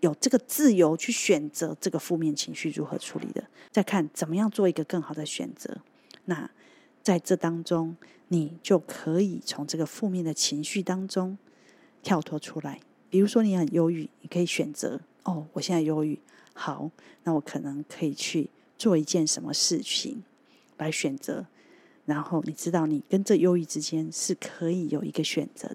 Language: Chinese